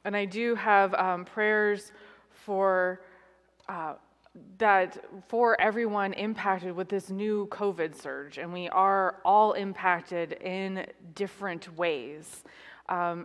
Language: English